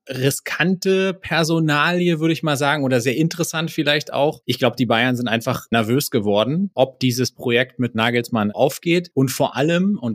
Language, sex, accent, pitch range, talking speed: German, male, German, 115-140 Hz, 170 wpm